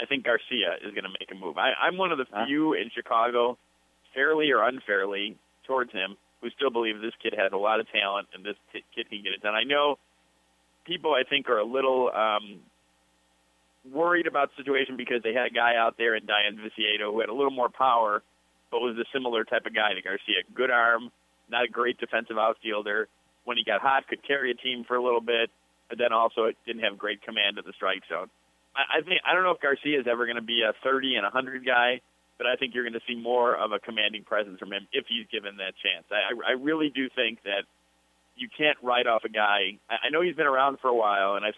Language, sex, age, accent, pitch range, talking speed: English, male, 30-49, American, 100-125 Hz, 235 wpm